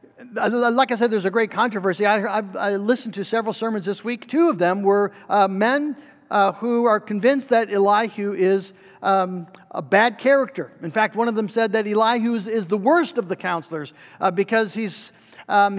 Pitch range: 200-250 Hz